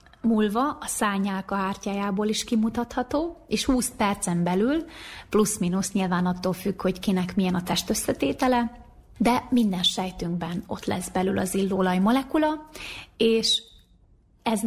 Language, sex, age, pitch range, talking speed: Hungarian, female, 30-49, 190-230 Hz, 125 wpm